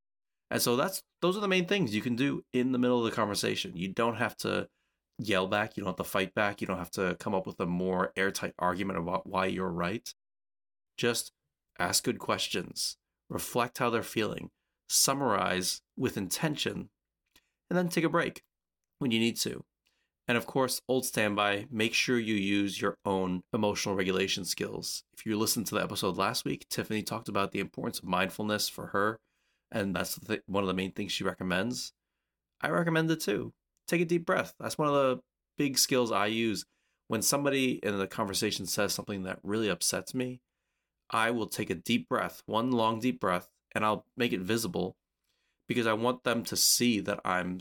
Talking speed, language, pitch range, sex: 195 wpm, English, 95-120 Hz, male